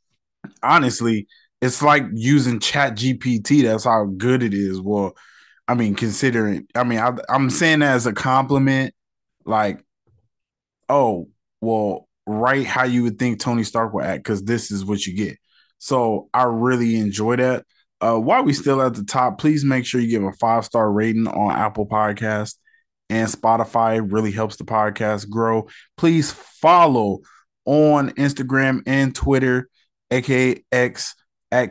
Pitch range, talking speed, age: 110-135 Hz, 155 wpm, 20-39